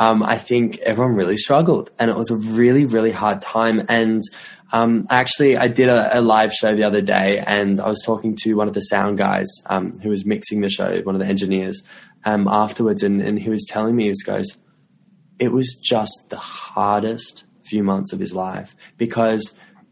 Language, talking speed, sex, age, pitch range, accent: English, 205 wpm, male, 10-29, 105-150 Hz, Australian